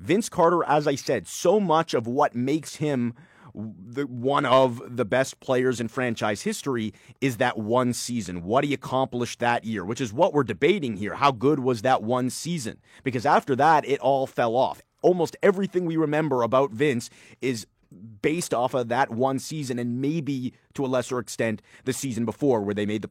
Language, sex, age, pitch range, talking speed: English, male, 30-49, 120-145 Hz, 190 wpm